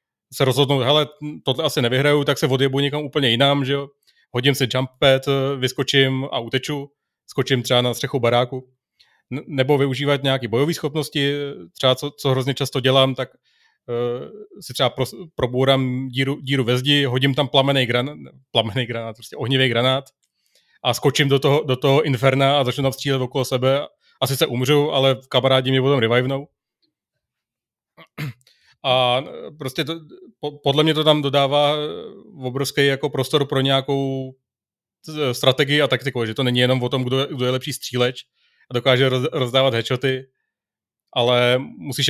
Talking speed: 155 wpm